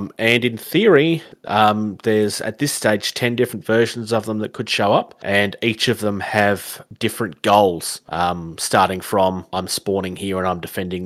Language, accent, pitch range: English, Australian, 90-115 Hz